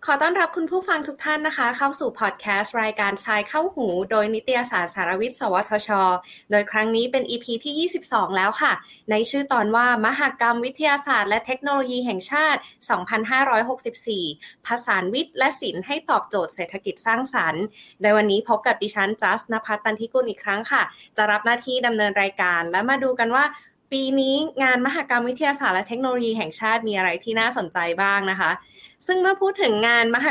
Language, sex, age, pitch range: Thai, female, 20-39, 210-265 Hz